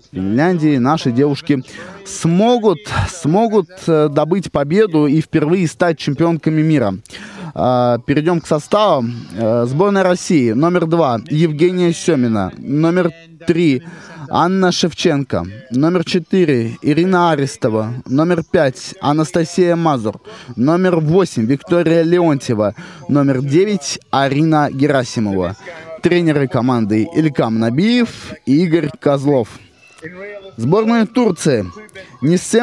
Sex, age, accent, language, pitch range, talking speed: male, 20-39, native, Russian, 140-180 Hz, 95 wpm